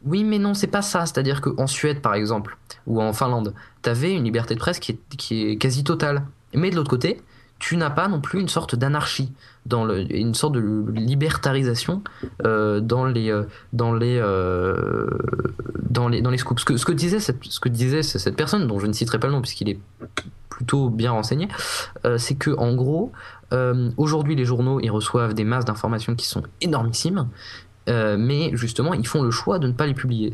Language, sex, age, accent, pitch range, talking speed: French, male, 20-39, French, 110-140 Hz, 210 wpm